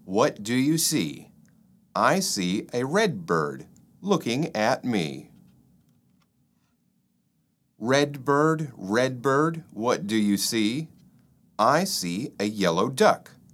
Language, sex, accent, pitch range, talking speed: English, male, American, 110-160 Hz, 110 wpm